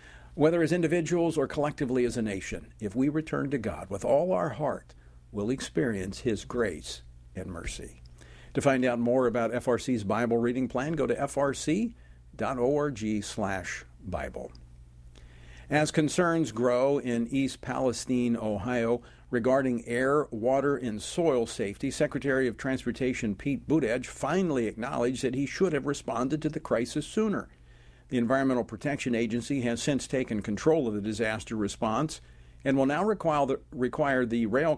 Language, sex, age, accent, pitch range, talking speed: English, male, 50-69, American, 110-145 Hz, 145 wpm